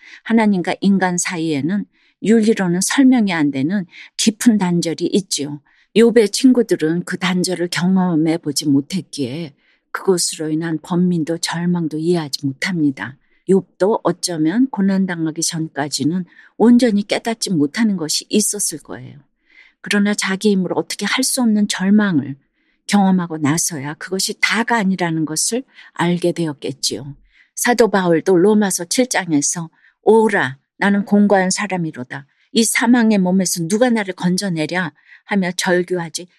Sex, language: female, Korean